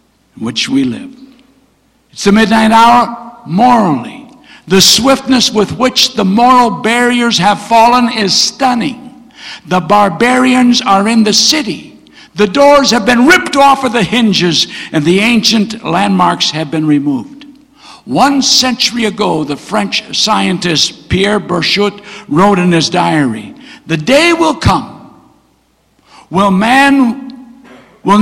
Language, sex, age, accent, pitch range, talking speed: English, male, 60-79, American, 170-250 Hz, 130 wpm